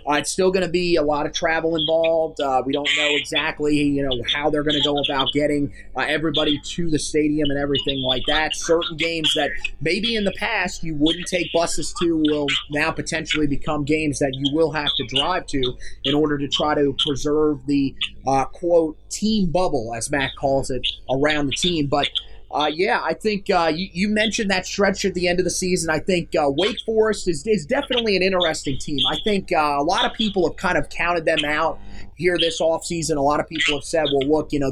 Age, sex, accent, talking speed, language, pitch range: 30-49, male, American, 225 wpm, English, 145-180 Hz